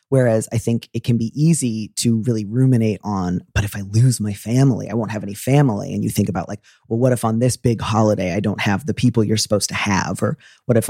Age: 30-49